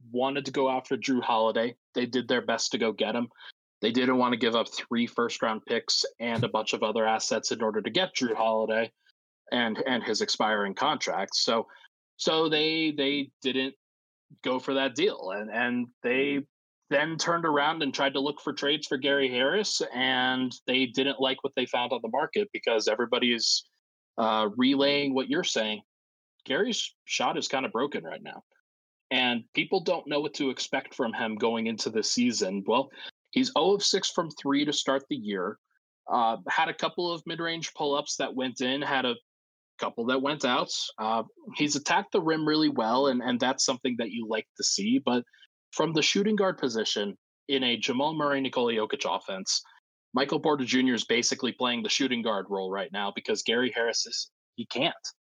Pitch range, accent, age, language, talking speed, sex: 120-150 Hz, American, 20-39, English, 195 wpm, male